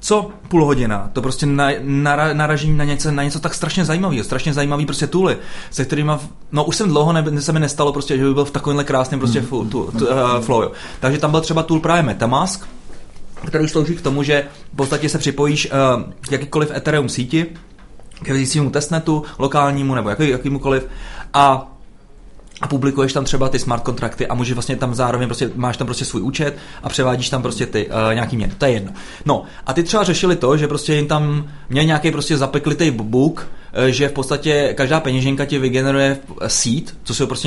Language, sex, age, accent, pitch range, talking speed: Czech, male, 30-49, native, 125-150 Hz, 195 wpm